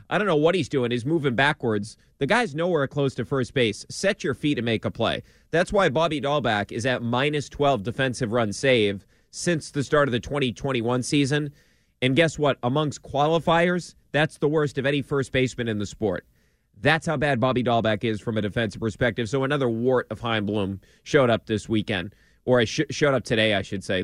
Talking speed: 205 wpm